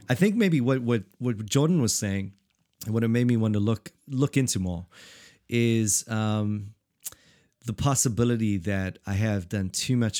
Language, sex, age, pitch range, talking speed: English, male, 30-49, 100-120 Hz, 175 wpm